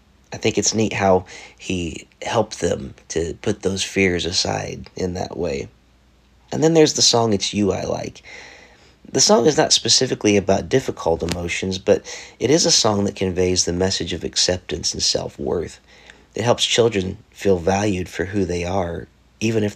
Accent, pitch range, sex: American, 90-120 Hz, male